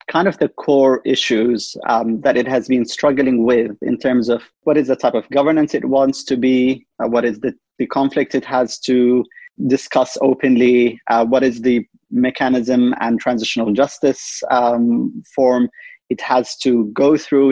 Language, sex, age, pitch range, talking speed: English, male, 30-49, 125-180 Hz, 175 wpm